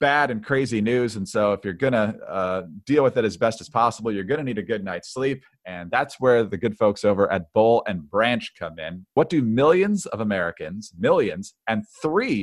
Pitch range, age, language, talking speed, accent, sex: 105-140 Hz, 40-59, English, 220 wpm, American, male